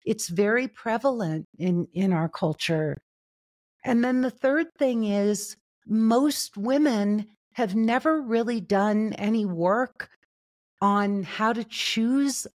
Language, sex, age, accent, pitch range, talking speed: English, female, 50-69, American, 175-225 Hz, 120 wpm